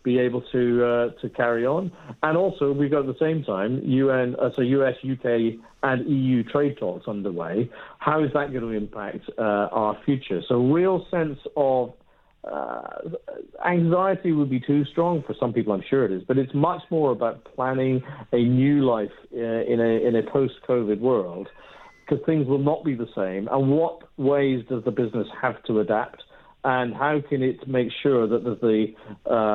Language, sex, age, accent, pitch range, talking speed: English, male, 50-69, British, 120-140 Hz, 190 wpm